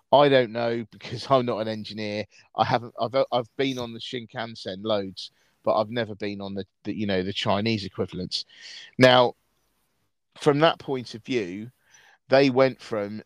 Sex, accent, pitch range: male, British, 105-125 Hz